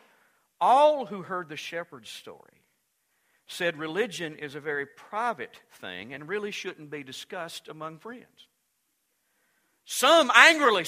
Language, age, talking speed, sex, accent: English, 50-69, 120 wpm, male, American